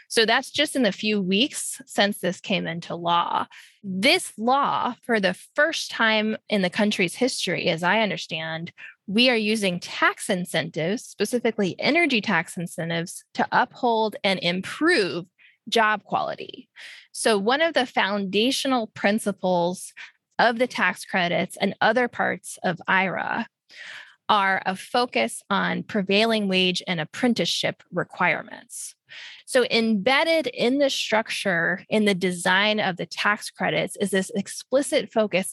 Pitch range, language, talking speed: 180-240 Hz, English, 135 wpm